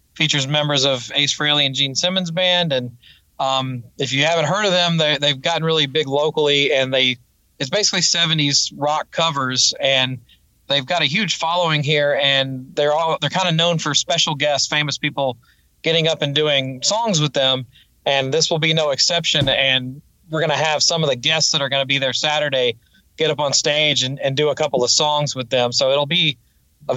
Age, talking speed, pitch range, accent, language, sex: 30-49, 210 wpm, 135-155 Hz, American, English, male